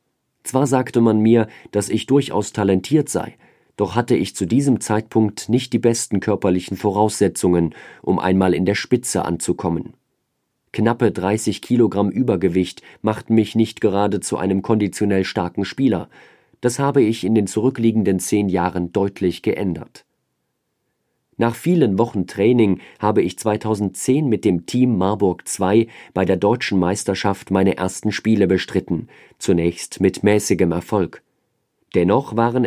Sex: male